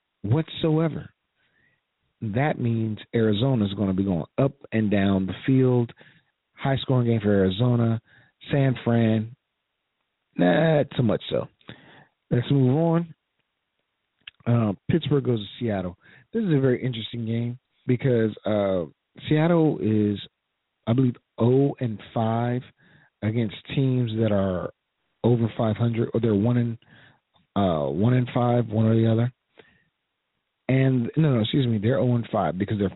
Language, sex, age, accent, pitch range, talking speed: English, male, 40-59, American, 105-130 Hz, 135 wpm